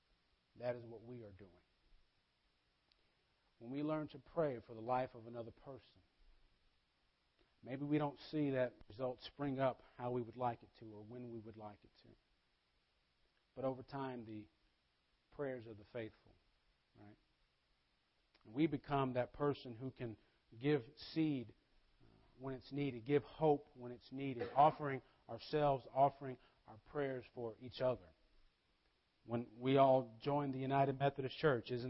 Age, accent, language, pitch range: 40-59, American, English, 105-135 Hz